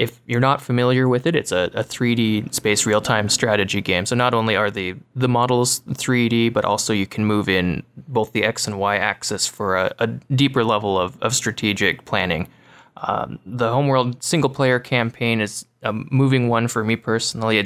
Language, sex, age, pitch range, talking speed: English, male, 20-39, 105-125 Hz, 185 wpm